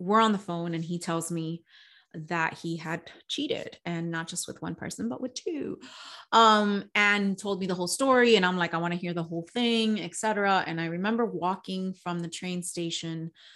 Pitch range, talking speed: 175-220 Hz, 210 wpm